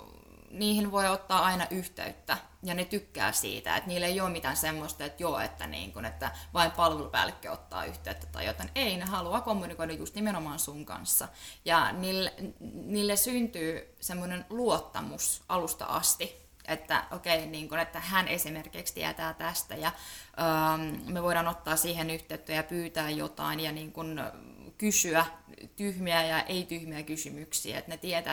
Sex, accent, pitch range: female, native, 145-180 Hz